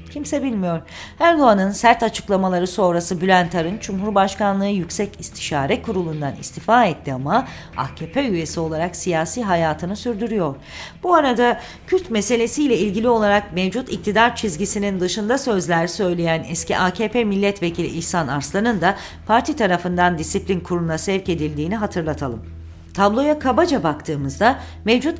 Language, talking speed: Turkish, 120 wpm